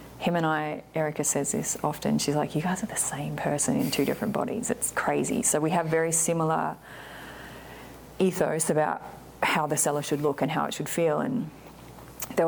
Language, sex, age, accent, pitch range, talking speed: English, female, 30-49, Australian, 145-175 Hz, 190 wpm